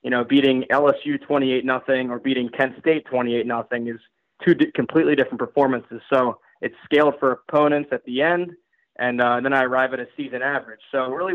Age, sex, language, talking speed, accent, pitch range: 20-39, male, English, 185 wpm, American, 125-150 Hz